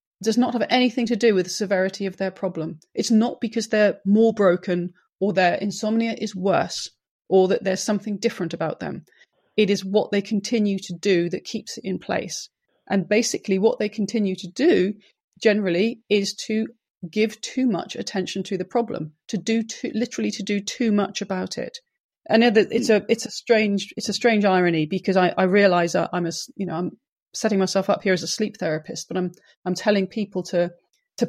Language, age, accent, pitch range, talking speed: English, 30-49, British, 185-225 Hz, 200 wpm